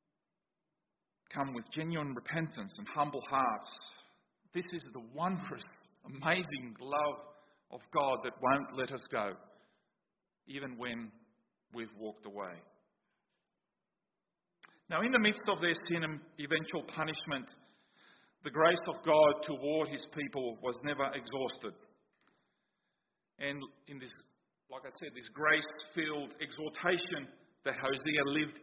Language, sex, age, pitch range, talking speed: English, male, 40-59, 145-195 Hz, 120 wpm